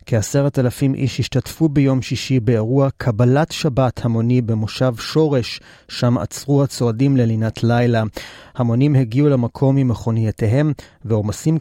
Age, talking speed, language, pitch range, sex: 30-49, 115 wpm, Hebrew, 110-135 Hz, male